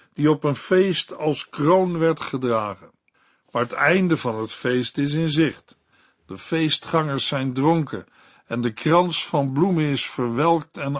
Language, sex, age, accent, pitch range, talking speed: Dutch, male, 60-79, Dutch, 135-175 Hz, 160 wpm